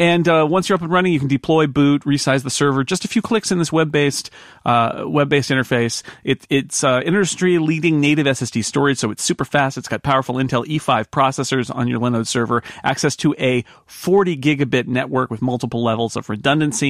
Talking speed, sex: 200 wpm, male